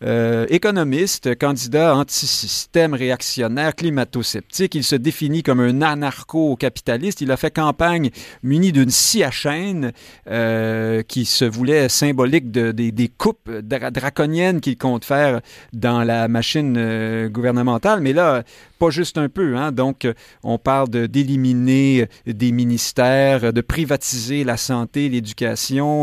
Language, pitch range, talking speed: French, 120-160 Hz, 135 wpm